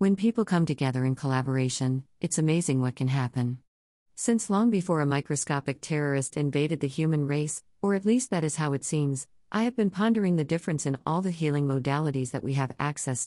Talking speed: 200 wpm